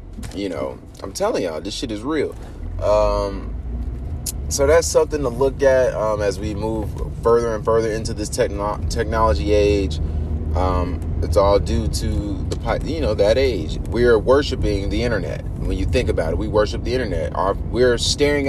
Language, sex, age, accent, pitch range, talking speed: English, male, 20-39, American, 80-120 Hz, 175 wpm